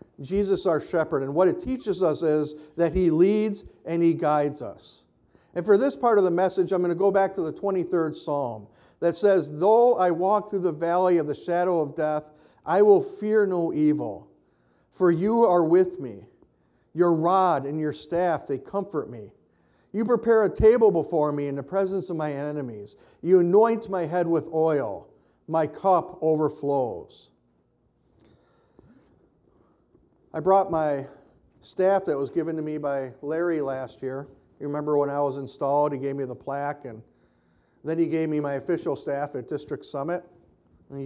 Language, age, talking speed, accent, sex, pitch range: English, 50-69, 175 wpm, American, male, 140-180 Hz